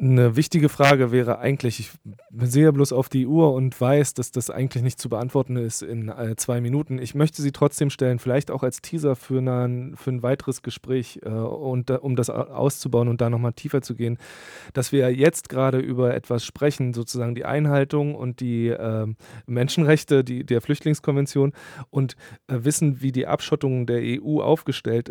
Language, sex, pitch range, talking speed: German, male, 120-145 Hz, 165 wpm